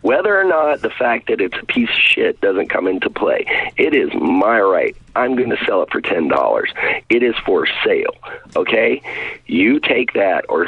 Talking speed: 195 wpm